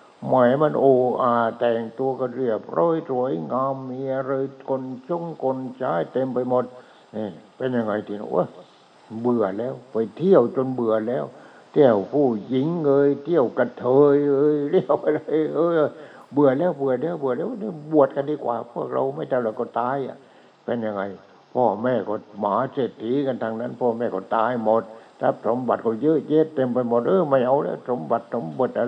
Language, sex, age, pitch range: English, male, 60-79, 110-135 Hz